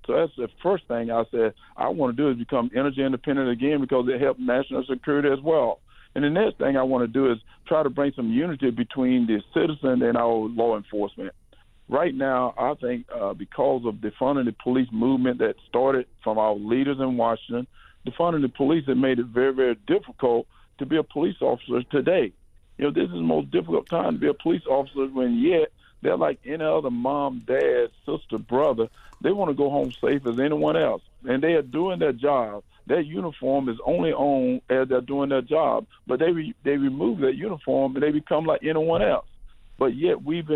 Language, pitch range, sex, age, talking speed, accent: English, 120-145 Hz, male, 50-69, 210 wpm, American